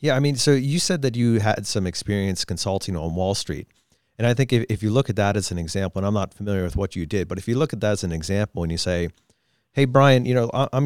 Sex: male